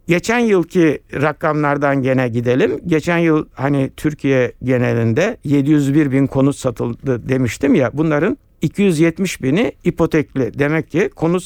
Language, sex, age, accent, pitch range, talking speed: Turkish, male, 60-79, native, 125-185 Hz, 120 wpm